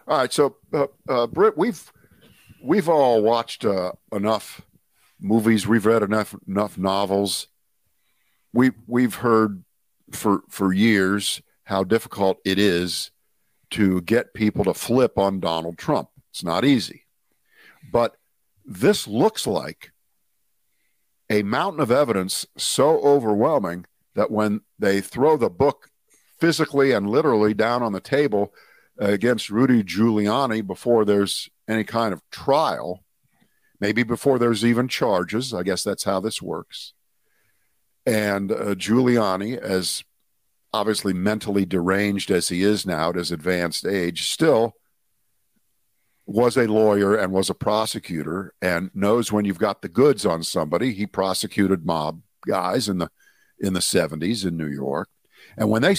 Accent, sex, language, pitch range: American, male, English, 95-115 Hz